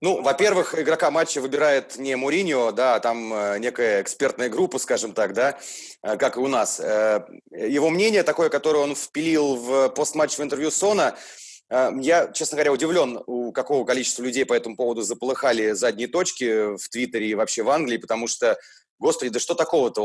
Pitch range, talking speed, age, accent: 120-170 Hz, 170 wpm, 30-49, native